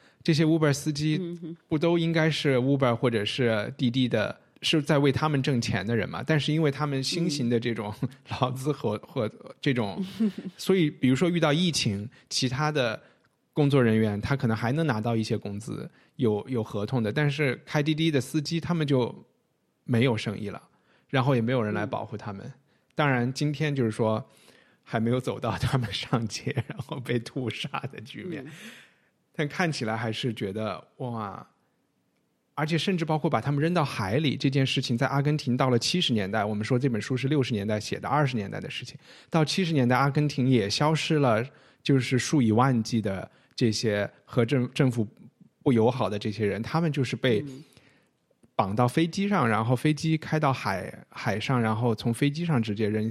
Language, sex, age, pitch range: Chinese, male, 20-39, 115-150 Hz